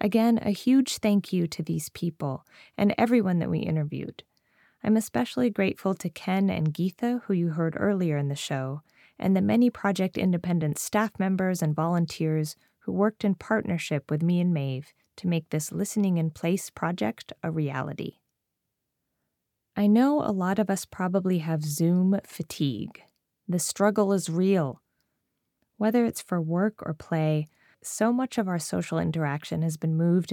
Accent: American